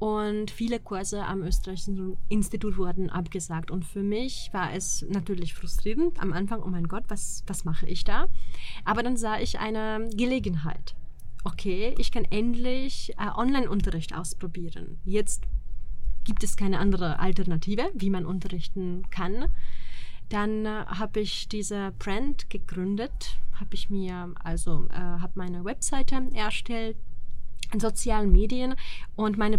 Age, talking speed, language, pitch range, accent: 30-49, 140 wpm, Czech, 185-215 Hz, German